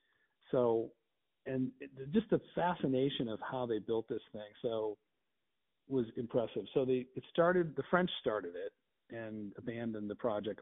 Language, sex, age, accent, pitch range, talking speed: English, male, 50-69, American, 110-140 Hz, 155 wpm